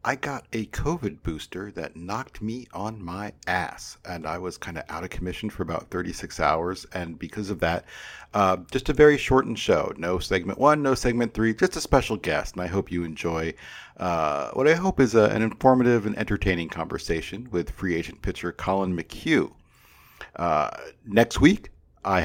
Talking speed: 185 wpm